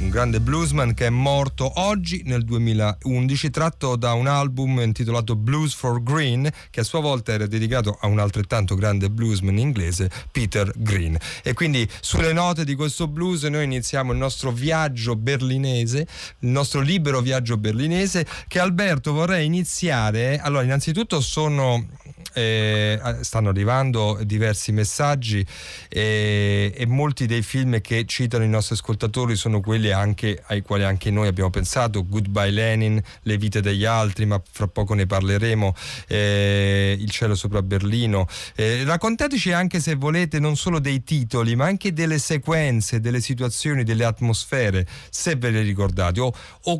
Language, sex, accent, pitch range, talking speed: Italian, male, native, 105-145 Hz, 155 wpm